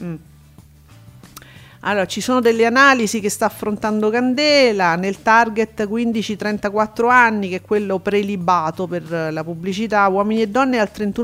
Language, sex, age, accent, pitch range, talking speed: Italian, female, 40-59, native, 195-240 Hz, 130 wpm